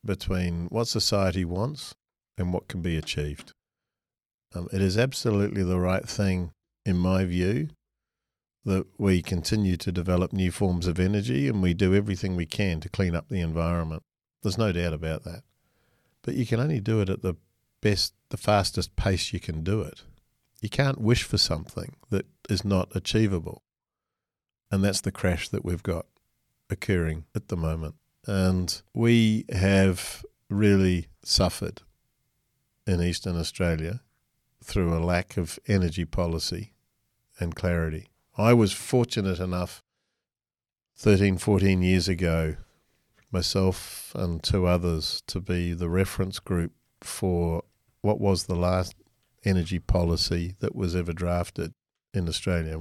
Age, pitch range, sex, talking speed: 50-69, 90-105 Hz, male, 145 wpm